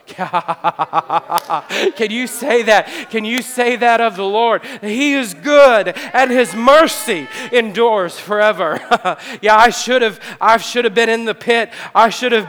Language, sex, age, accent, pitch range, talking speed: English, male, 40-59, American, 235-285 Hz, 160 wpm